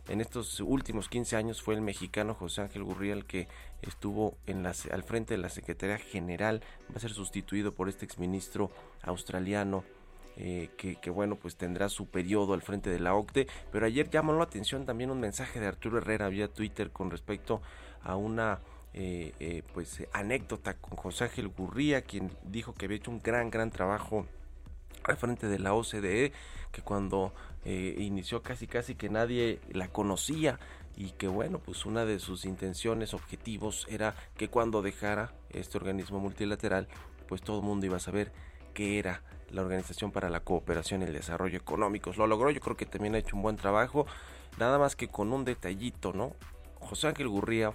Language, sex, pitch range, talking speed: Spanish, male, 90-110 Hz, 185 wpm